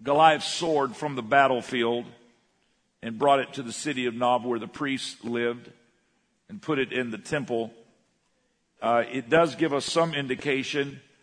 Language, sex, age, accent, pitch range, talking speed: English, male, 50-69, American, 115-145 Hz, 160 wpm